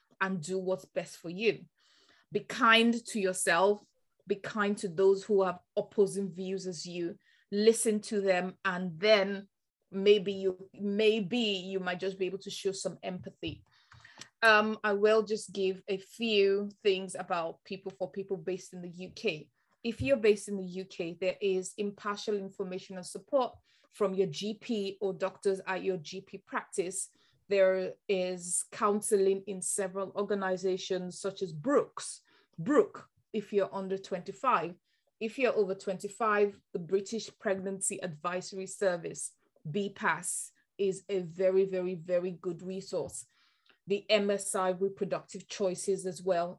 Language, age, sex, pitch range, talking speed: English, 20-39, female, 185-205 Hz, 145 wpm